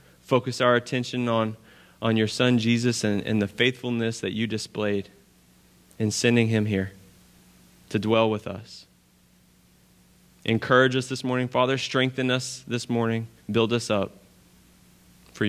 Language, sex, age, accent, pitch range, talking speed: English, male, 20-39, American, 110-140 Hz, 140 wpm